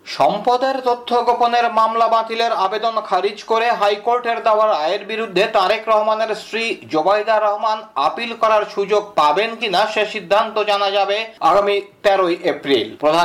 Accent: native